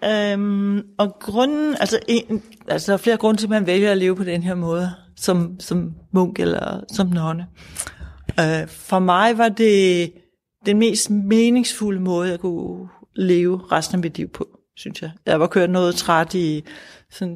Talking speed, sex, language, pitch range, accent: 180 wpm, female, Danish, 175-215 Hz, native